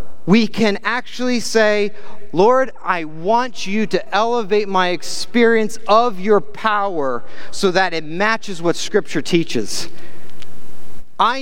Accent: American